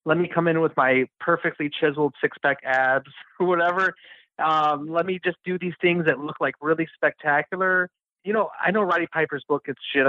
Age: 30-49